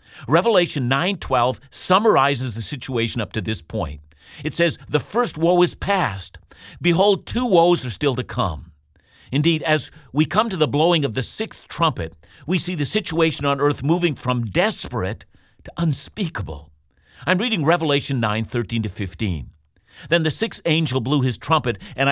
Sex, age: male, 50-69